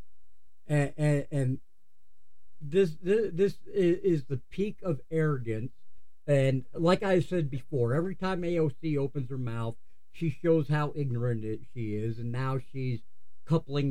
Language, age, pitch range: English, 50-69, 120-170 Hz